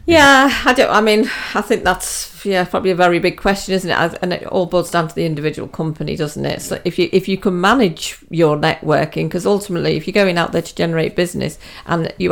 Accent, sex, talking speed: British, female, 235 wpm